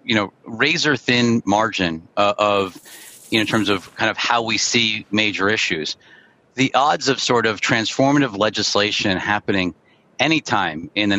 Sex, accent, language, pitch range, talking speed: male, American, English, 120-160 Hz, 150 wpm